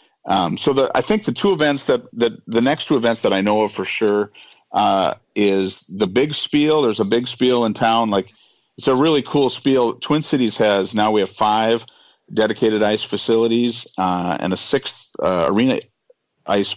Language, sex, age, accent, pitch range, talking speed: English, male, 40-59, American, 100-115 Hz, 195 wpm